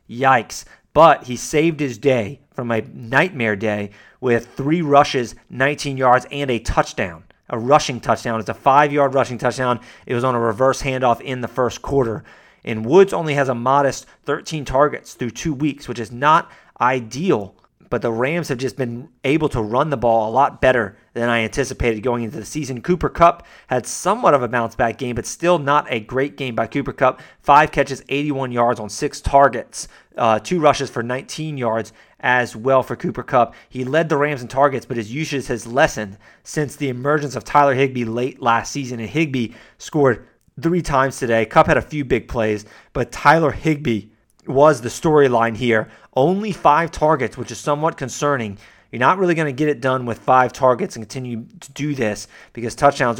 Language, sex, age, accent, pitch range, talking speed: English, male, 30-49, American, 120-150 Hz, 195 wpm